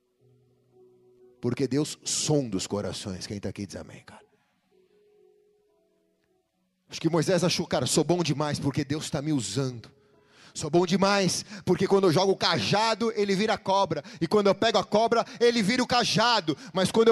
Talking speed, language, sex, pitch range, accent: 170 wpm, Portuguese, male, 130-185 Hz, Brazilian